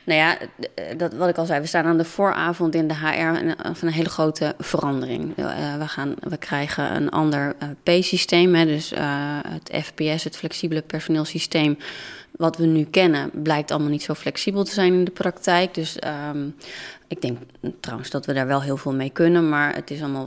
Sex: female